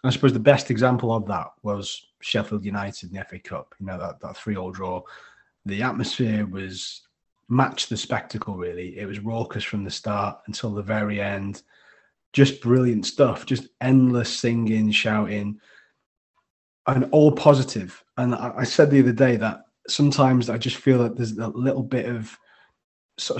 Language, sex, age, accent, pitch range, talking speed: English, male, 30-49, British, 110-135 Hz, 170 wpm